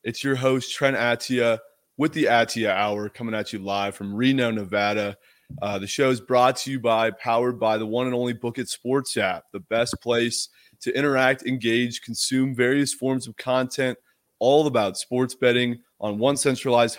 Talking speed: 185 wpm